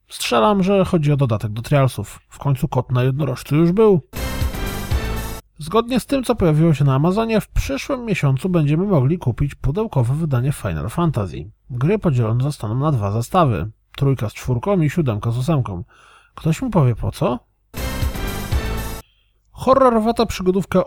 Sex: male